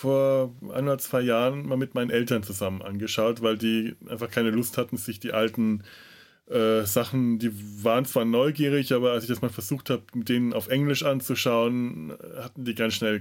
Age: 30-49